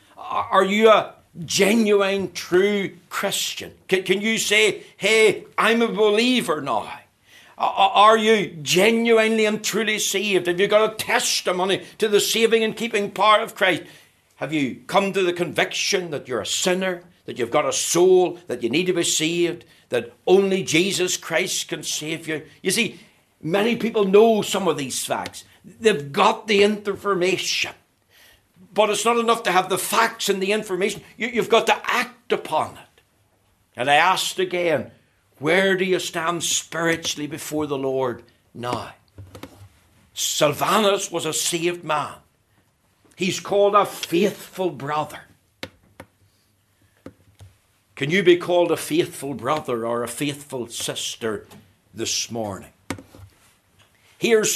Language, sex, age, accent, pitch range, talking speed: English, male, 60-79, British, 140-205 Hz, 145 wpm